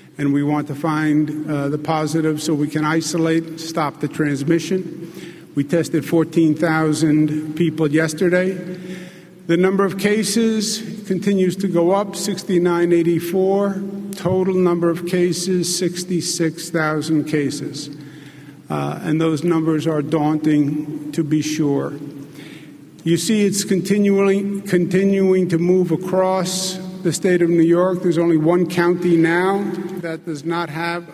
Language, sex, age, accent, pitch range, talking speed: English, male, 50-69, American, 160-185 Hz, 125 wpm